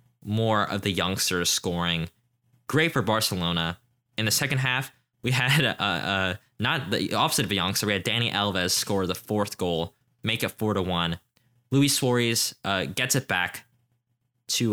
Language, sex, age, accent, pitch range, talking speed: English, male, 20-39, American, 100-125 Hz, 170 wpm